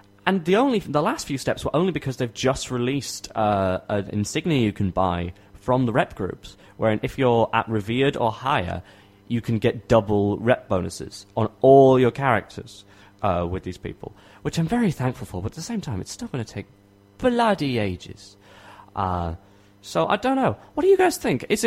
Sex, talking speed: male, 200 wpm